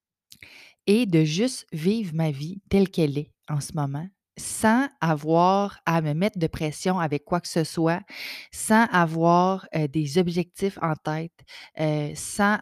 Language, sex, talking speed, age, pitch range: French, female, 155 wpm, 30-49, 155-190 Hz